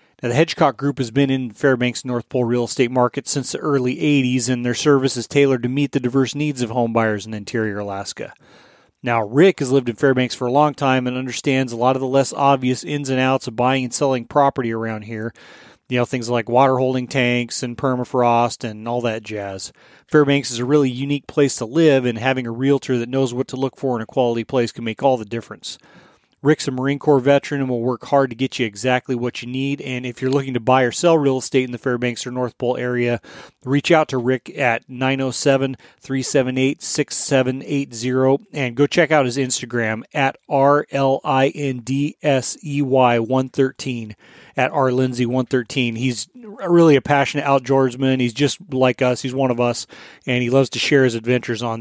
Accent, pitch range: American, 125-140 Hz